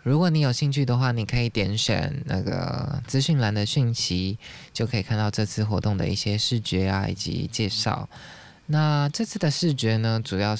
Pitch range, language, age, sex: 105-130 Hz, Chinese, 20-39, male